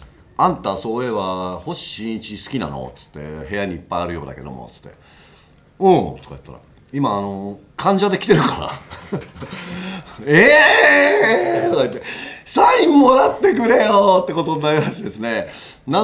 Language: Japanese